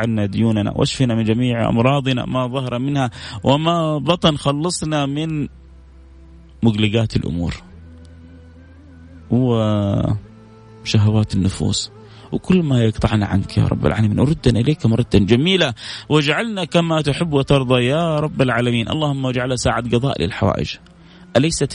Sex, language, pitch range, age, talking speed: male, Arabic, 105-145 Hz, 30-49, 115 wpm